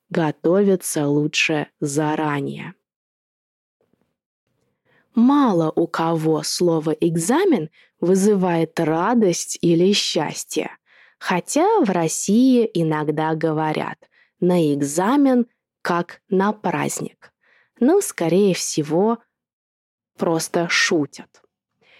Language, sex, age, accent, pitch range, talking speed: Russian, female, 20-39, native, 165-245 Hz, 75 wpm